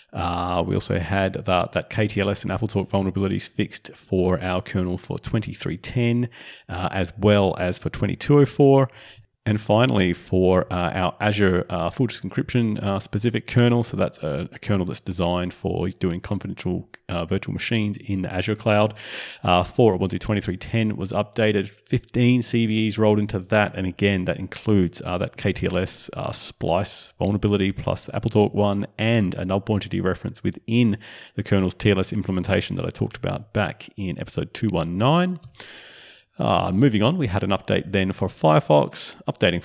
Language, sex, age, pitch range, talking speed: English, male, 30-49, 95-115 Hz, 160 wpm